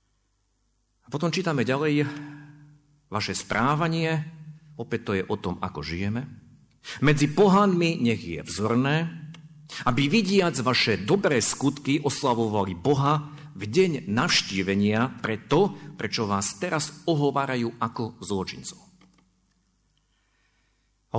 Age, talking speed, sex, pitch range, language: 50-69, 100 wpm, male, 95-145 Hz, Slovak